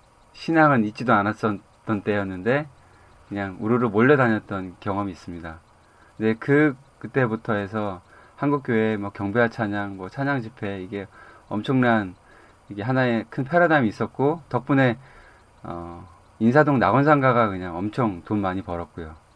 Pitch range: 95-120 Hz